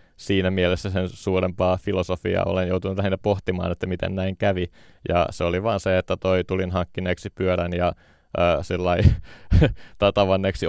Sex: male